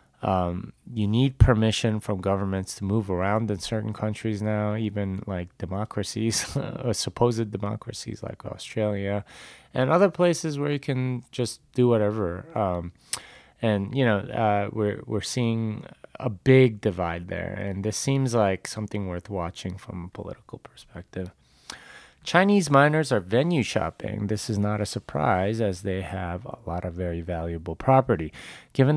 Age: 30-49